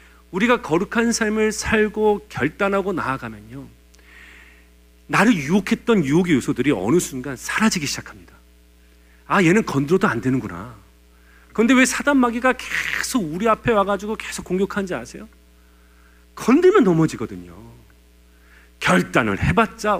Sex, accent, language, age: male, native, Korean, 40-59